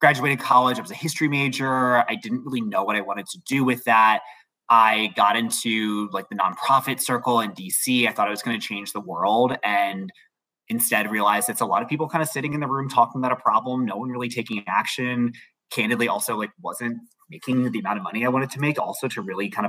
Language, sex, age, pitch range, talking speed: English, male, 20-39, 105-155 Hz, 230 wpm